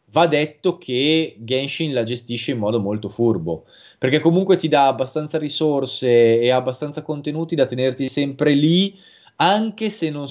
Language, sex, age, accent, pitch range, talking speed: Italian, male, 20-39, native, 110-135 Hz, 150 wpm